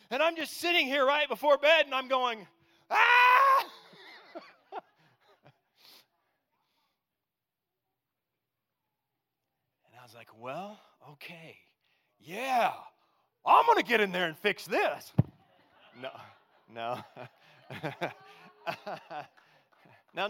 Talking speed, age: 90 wpm, 40-59